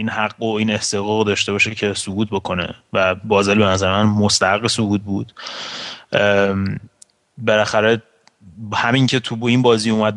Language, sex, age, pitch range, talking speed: Persian, male, 30-49, 100-115 Hz, 155 wpm